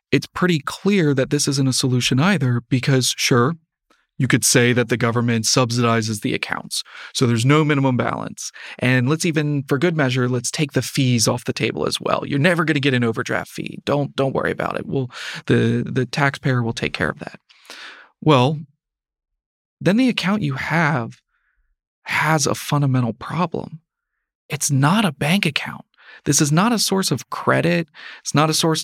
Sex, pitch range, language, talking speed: male, 130-160 Hz, English, 185 wpm